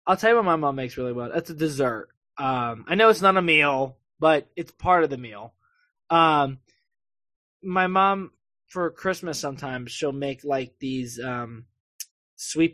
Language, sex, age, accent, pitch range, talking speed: English, male, 20-39, American, 130-165 Hz, 175 wpm